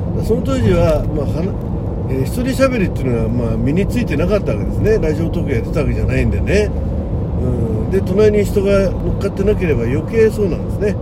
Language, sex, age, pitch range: Japanese, male, 60-79, 95-130 Hz